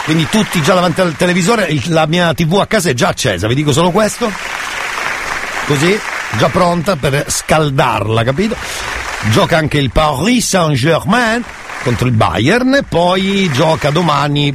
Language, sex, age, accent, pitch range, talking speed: Italian, male, 50-69, native, 125-180 Hz, 155 wpm